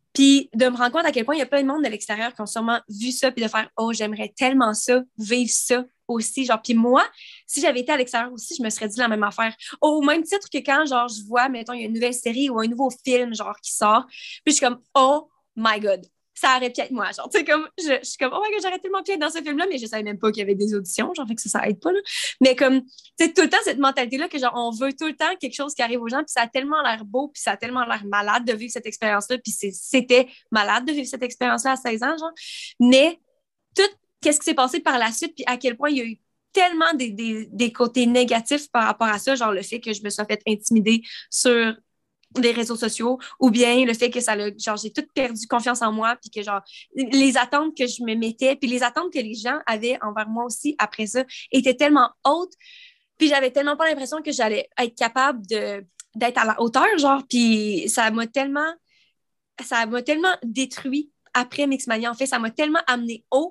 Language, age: French, 20-39